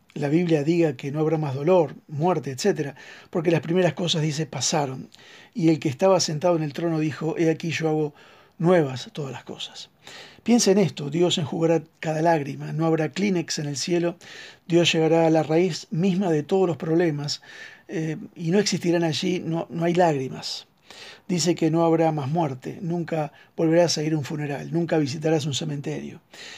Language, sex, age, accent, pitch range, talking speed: Spanish, male, 50-69, Argentinian, 155-175 Hz, 185 wpm